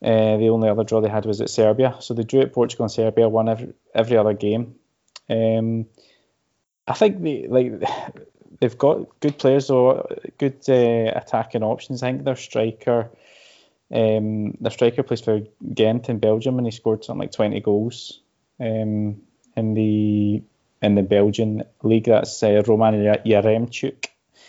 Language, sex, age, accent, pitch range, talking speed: English, male, 20-39, British, 110-120 Hz, 160 wpm